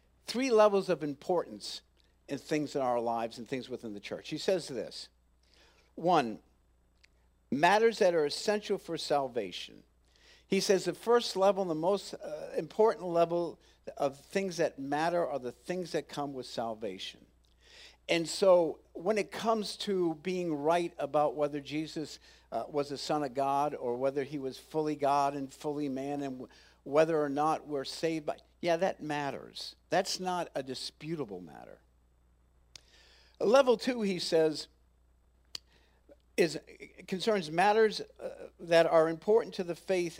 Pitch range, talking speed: 130-180 Hz, 150 wpm